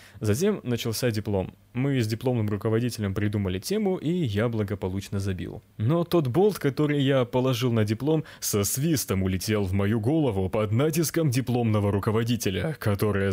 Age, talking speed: 20-39, 145 wpm